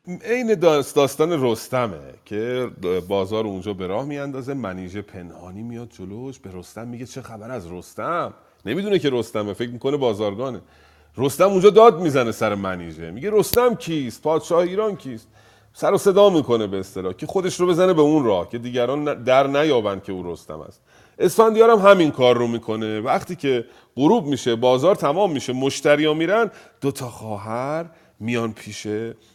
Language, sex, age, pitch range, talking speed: Persian, male, 40-59, 110-155 Hz, 160 wpm